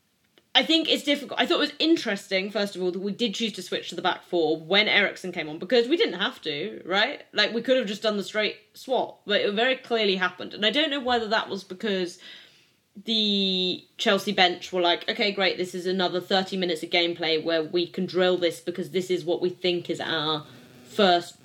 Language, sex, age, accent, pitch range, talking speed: English, female, 20-39, British, 175-220 Hz, 230 wpm